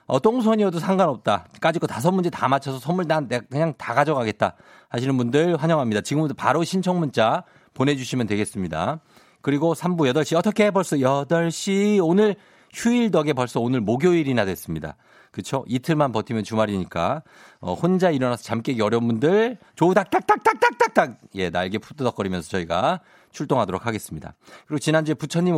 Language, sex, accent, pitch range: Korean, male, native, 120-170 Hz